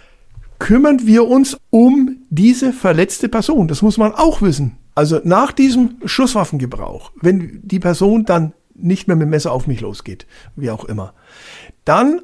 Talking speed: 155 wpm